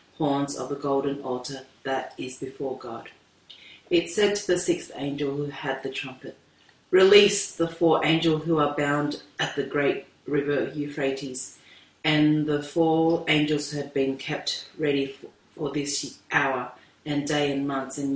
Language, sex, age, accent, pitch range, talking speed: English, female, 40-59, Australian, 140-160 Hz, 160 wpm